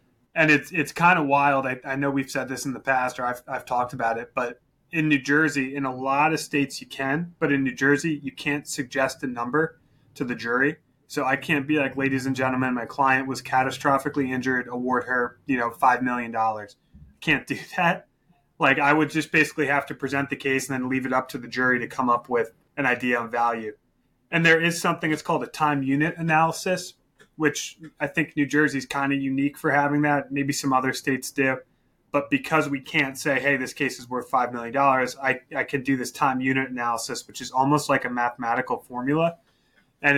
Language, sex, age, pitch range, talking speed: English, male, 30-49, 125-145 Hz, 220 wpm